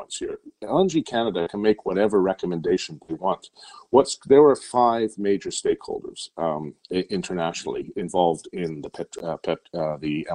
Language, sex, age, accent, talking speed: English, male, 50-69, American, 145 wpm